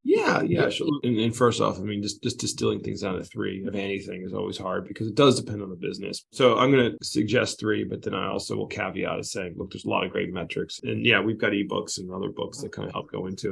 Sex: male